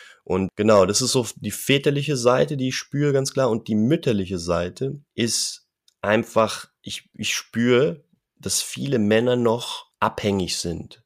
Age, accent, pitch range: 30-49, German, 100-125 Hz